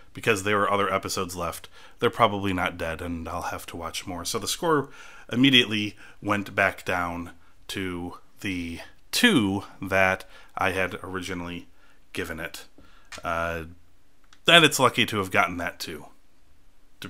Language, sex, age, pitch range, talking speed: English, male, 30-49, 95-120 Hz, 145 wpm